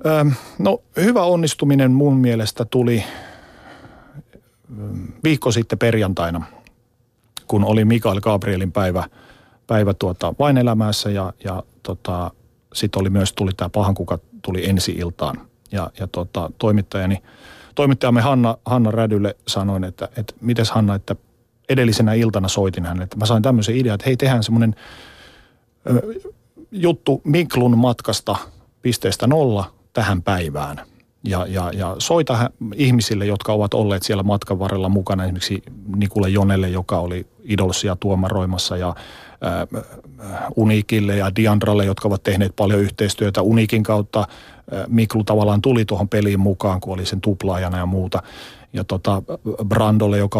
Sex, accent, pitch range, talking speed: male, native, 95-120 Hz, 130 wpm